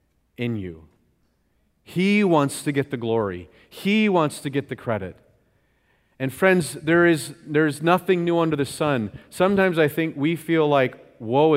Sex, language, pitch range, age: male, English, 120-155 Hz, 40-59